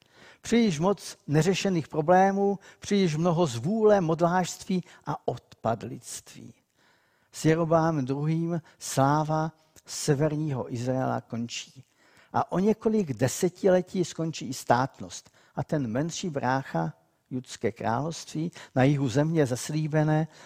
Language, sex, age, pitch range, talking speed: Czech, male, 50-69, 120-155 Hz, 100 wpm